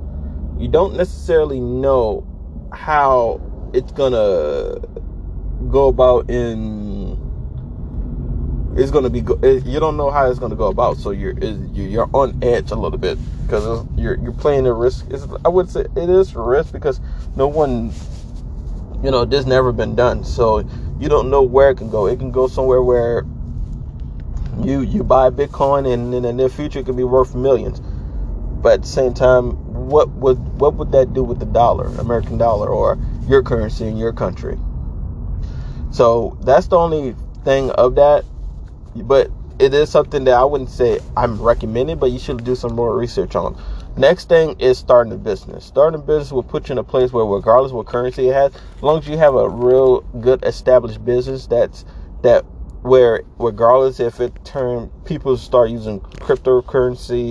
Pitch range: 115-135 Hz